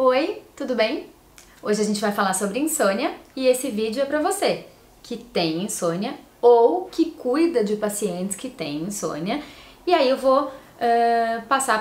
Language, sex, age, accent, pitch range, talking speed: Portuguese, female, 20-39, Brazilian, 190-255 Hz, 165 wpm